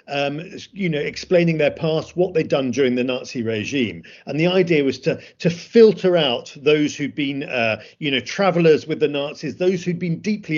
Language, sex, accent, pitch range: English, male, British, 140-190 Hz